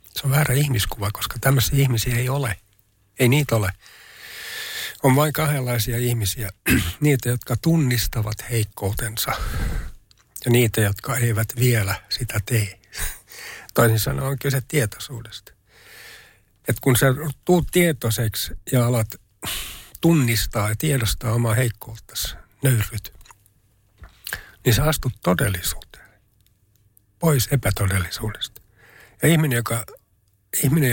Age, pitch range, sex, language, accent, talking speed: 60-79, 105-135 Hz, male, Finnish, native, 105 wpm